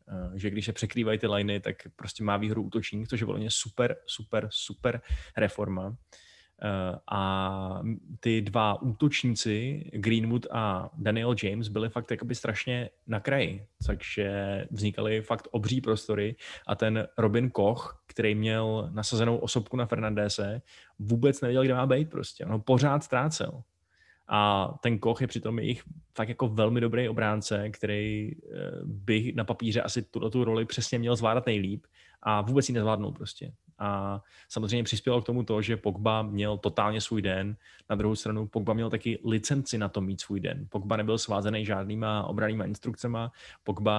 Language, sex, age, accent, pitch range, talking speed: Czech, male, 20-39, native, 105-115 Hz, 155 wpm